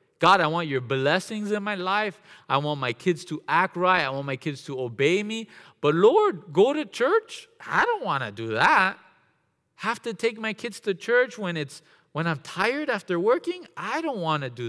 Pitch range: 140-195 Hz